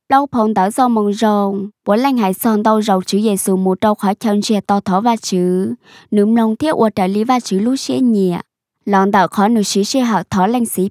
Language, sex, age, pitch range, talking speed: Vietnamese, male, 20-39, 195-245 Hz, 225 wpm